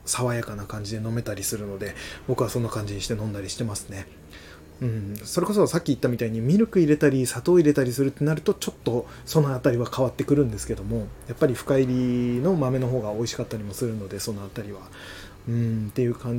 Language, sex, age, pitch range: Japanese, male, 20-39, 105-130 Hz